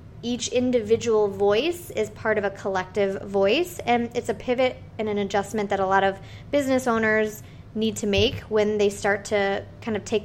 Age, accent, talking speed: 20-39, American, 185 wpm